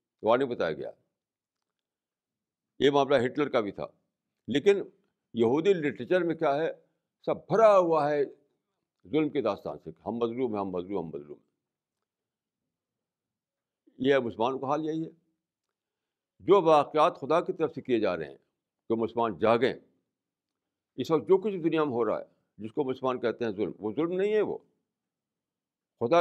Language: Urdu